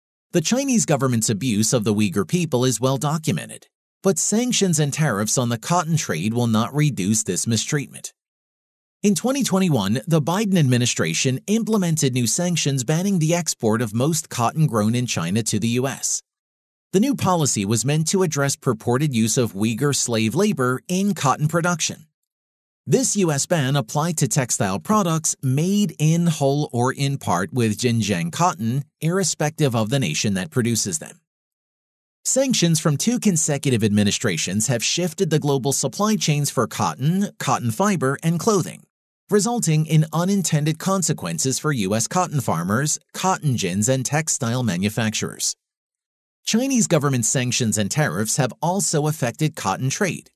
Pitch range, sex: 125-175 Hz, male